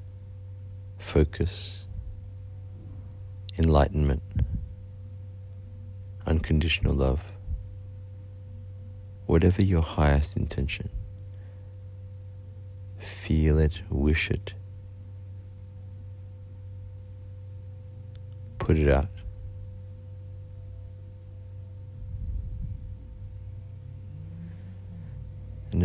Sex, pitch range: male, 80-95 Hz